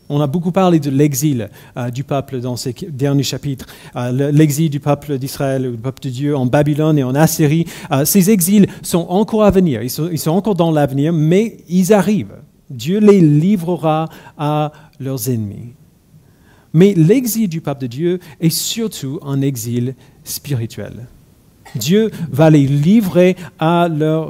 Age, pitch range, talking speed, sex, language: 50-69, 130-170 Hz, 165 wpm, male, French